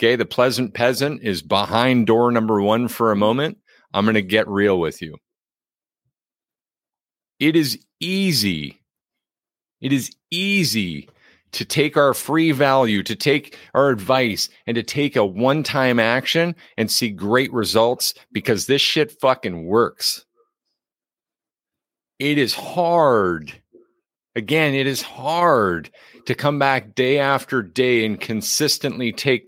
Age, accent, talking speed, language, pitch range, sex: 40-59, American, 135 wpm, English, 115-155 Hz, male